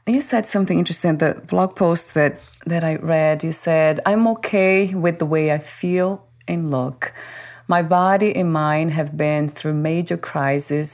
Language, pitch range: English, 140-165 Hz